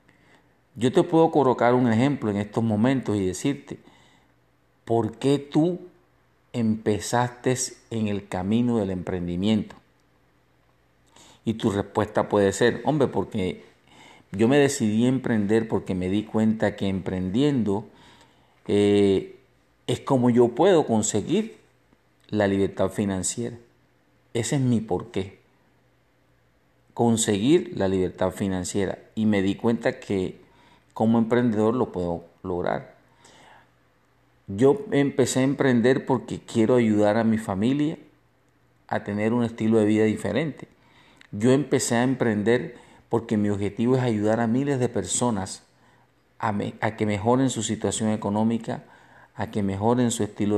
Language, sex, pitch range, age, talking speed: Spanish, male, 100-125 Hz, 50-69, 125 wpm